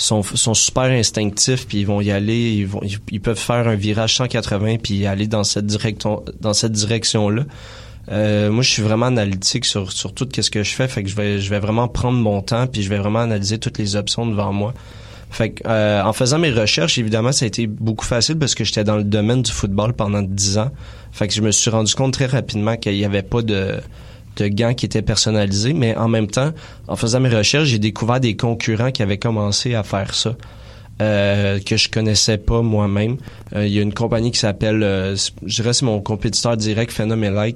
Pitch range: 105-115 Hz